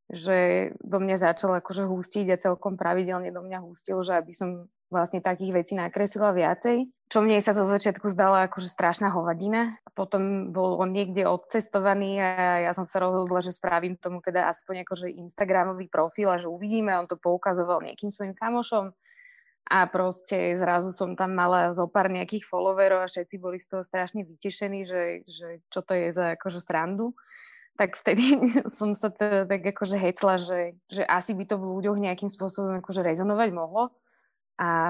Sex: female